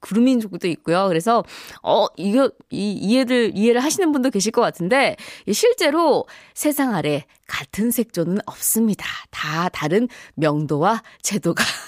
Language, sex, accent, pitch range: Korean, female, native, 175-260 Hz